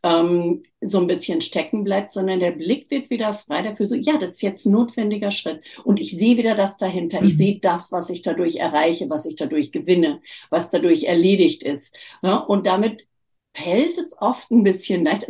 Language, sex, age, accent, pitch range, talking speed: German, female, 60-79, German, 185-285 Hz, 190 wpm